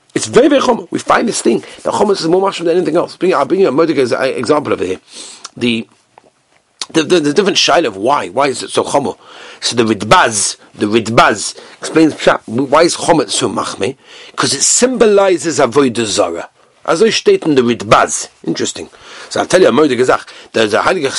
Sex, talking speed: male, 195 wpm